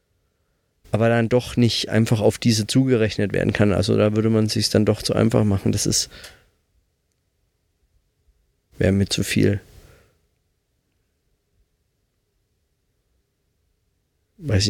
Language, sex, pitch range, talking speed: German, male, 90-125 Hz, 115 wpm